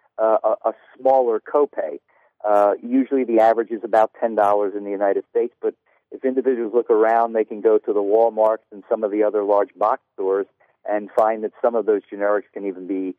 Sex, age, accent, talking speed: male, 50-69, American, 200 wpm